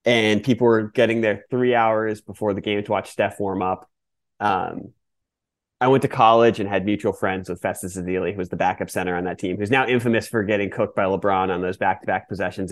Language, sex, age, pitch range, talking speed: English, male, 30-49, 95-130 Hz, 220 wpm